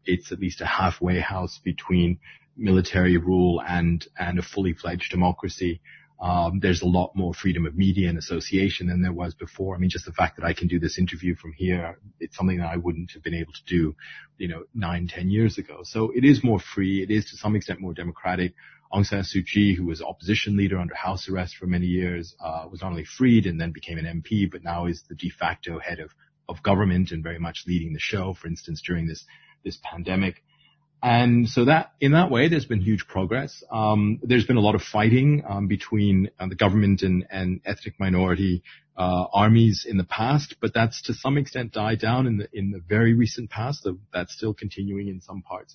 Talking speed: 220 wpm